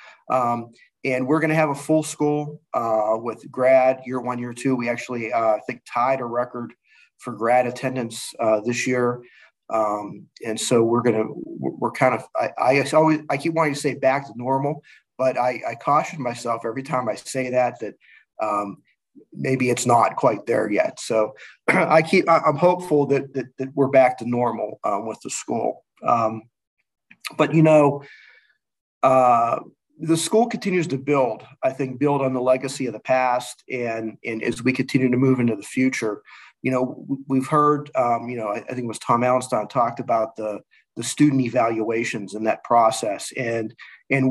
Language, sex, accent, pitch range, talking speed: English, male, American, 120-145 Hz, 190 wpm